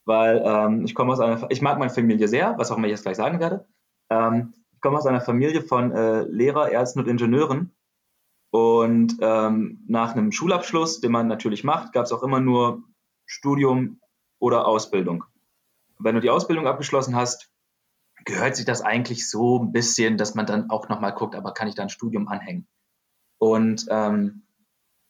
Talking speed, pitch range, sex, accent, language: 180 wpm, 110-145 Hz, male, German, English